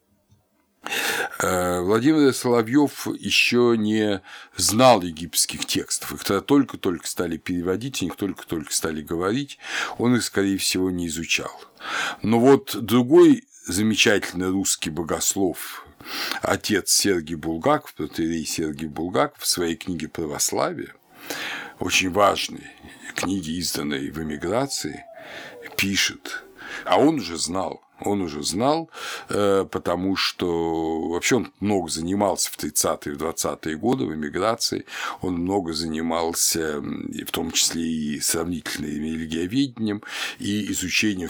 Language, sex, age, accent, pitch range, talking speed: Russian, male, 50-69, native, 85-120 Hz, 110 wpm